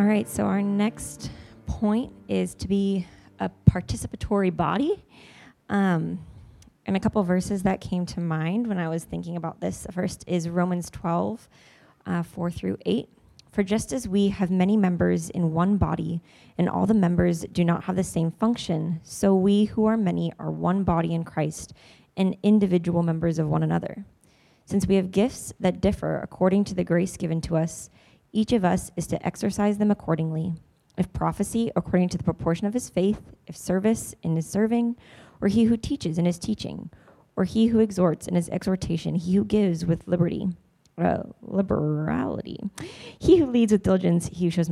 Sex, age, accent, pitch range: female, 20-39, American, 165-205 Hz